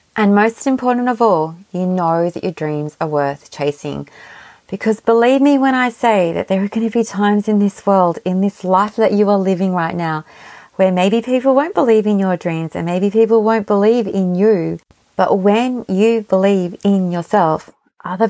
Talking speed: 195 wpm